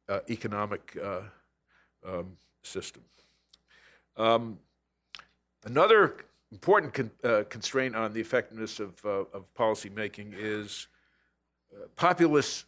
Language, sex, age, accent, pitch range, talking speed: English, male, 50-69, American, 100-125 Hz, 90 wpm